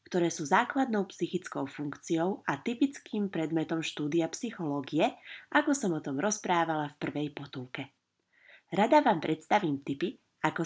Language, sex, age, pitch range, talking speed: Slovak, female, 30-49, 155-205 Hz, 130 wpm